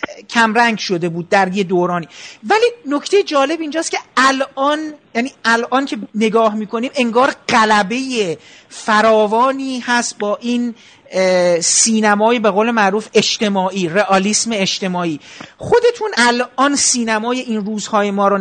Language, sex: Persian, male